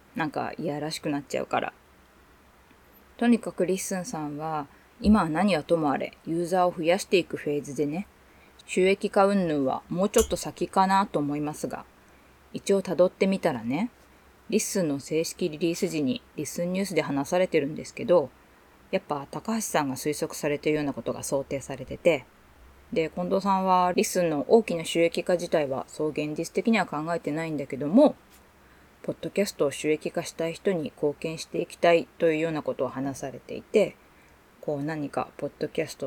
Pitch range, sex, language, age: 145-190 Hz, female, Japanese, 20-39